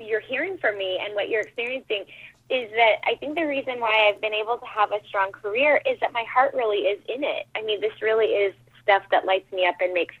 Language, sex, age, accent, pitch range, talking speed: English, female, 20-39, American, 185-255 Hz, 255 wpm